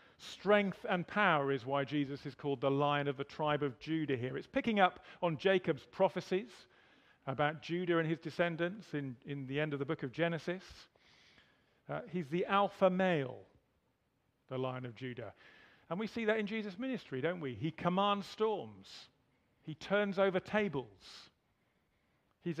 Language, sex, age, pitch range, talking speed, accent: English, male, 40-59, 140-180 Hz, 165 wpm, British